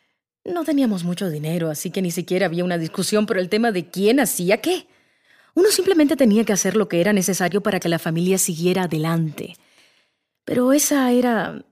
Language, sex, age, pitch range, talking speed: English, female, 30-49, 180-250 Hz, 185 wpm